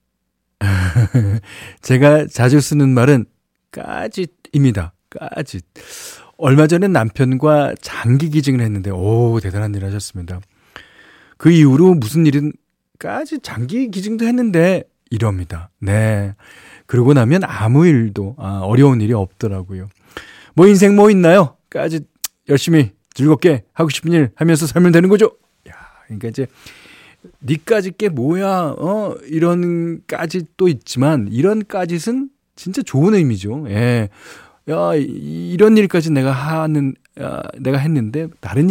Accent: native